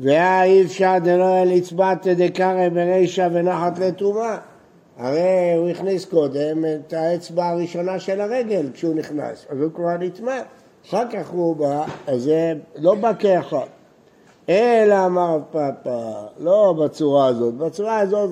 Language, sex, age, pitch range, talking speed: Hebrew, male, 60-79, 155-195 Hz, 135 wpm